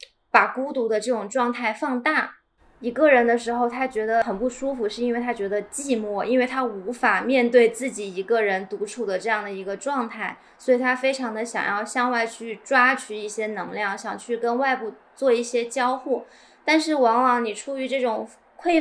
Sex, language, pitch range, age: female, Chinese, 205-250 Hz, 20-39